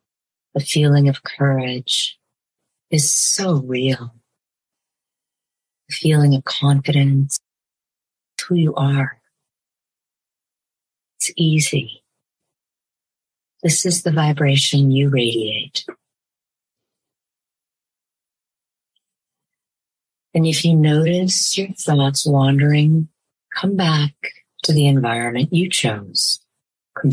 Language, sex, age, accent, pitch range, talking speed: English, female, 50-69, American, 135-160 Hz, 85 wpm